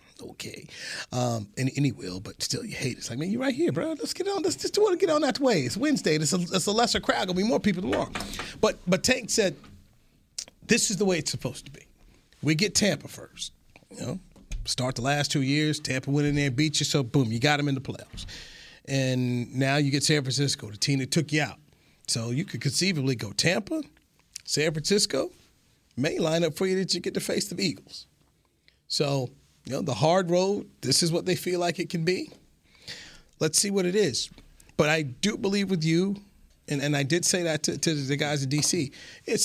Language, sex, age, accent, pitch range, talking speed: English, male, 40-59, American, 135-190 Hz, 230 wpm